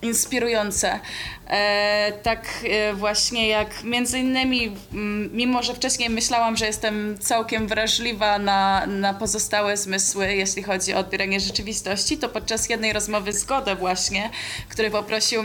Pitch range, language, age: 205-245 Hz, Polish, 20-39